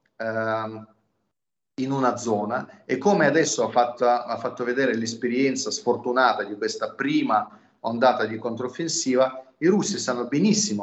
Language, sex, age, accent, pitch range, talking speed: Italian, male, 30-49, native, 110-140 Hz, 120 wpm